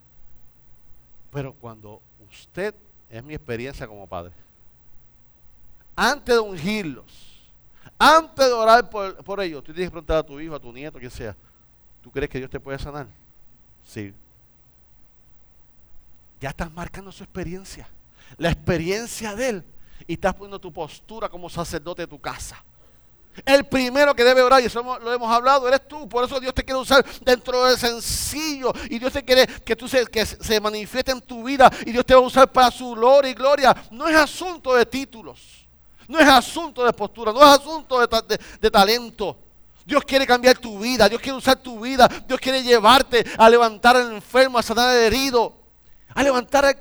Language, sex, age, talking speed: Spanish, male, 40-59, 180 wpm